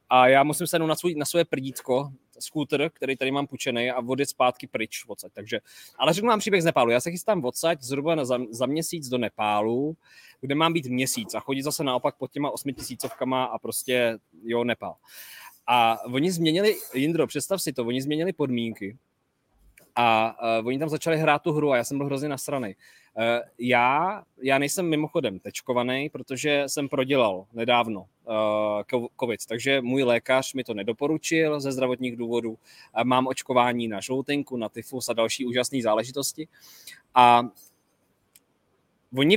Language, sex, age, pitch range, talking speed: Czech, male, 20-39, 120-150 Hz, 165 wpm